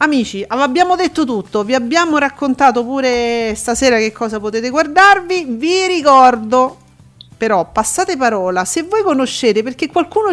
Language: Italian